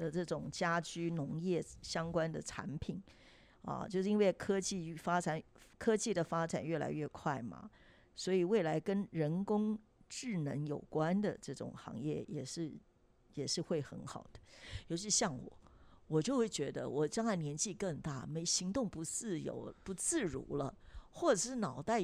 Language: Chinese